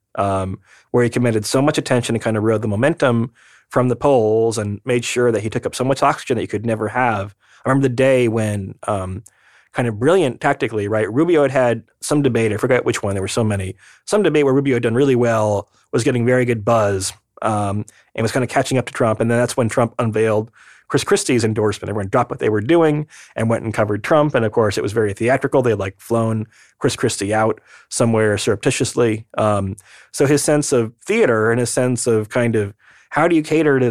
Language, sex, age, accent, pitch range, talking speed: English, male, 30-49, American, 110-135 Hz, 230 wpm